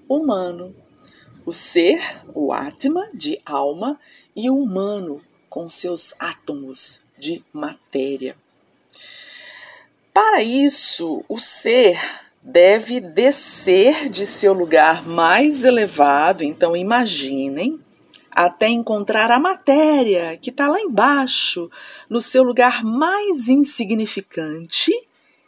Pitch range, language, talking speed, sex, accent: 185-285 Hz, Portuguese, 95 wpm, female, Brazilian